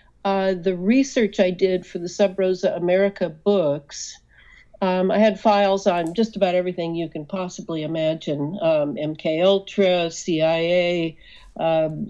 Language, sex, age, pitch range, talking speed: English, female, 60-79, 165-200 Hz, 130 wpm